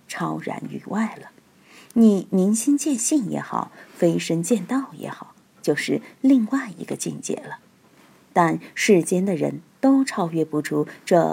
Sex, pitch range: female, 175-250 Hz